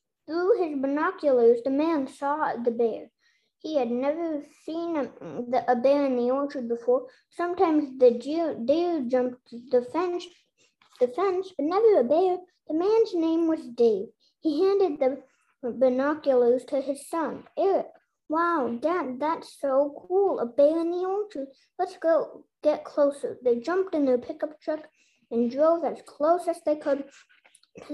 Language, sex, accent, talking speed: English, female, American, 155 wpm